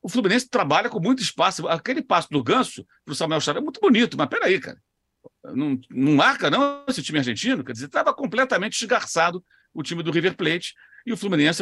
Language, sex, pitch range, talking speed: Portuguese, male, 150-210 Hz, 210 wpm